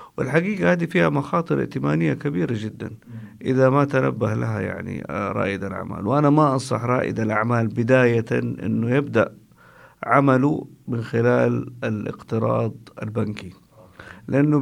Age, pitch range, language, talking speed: 50-69, 115-145 Hz, Arabic, 115 wpm